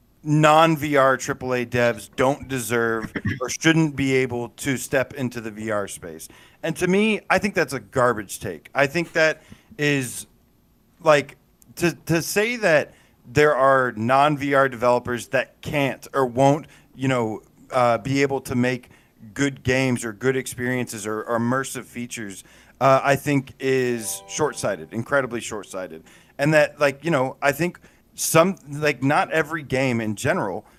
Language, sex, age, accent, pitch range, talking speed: English, male, 40-59, American, 120-150 Hz, 150 wpm